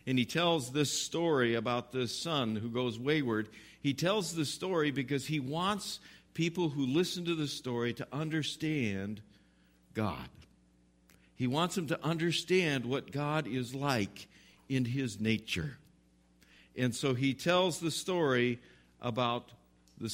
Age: 50-69